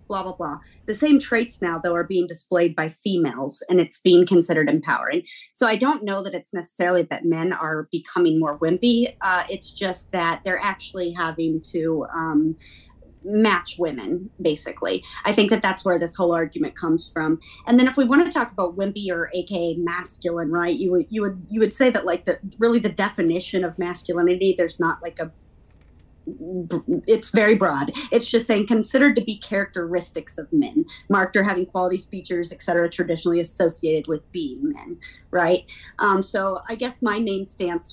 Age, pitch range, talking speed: 30-49, 170-210 Hz, 185 wpm